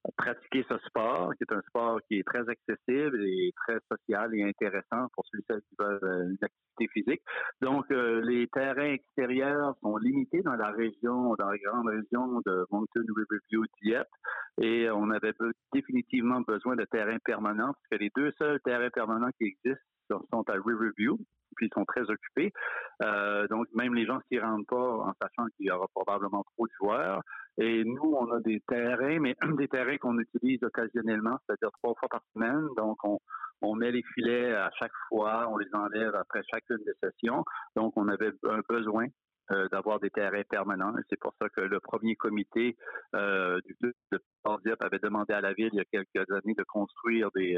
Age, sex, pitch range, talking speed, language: 50-69, male, 105-125 Hz, 190 wpm, French